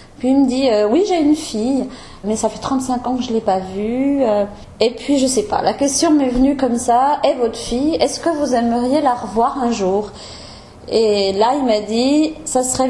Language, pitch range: French, 210-260 Hz